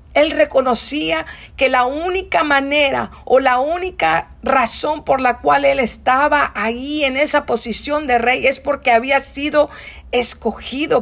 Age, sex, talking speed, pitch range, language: 50-69, female, 140 wpm, 215-270 Hz, English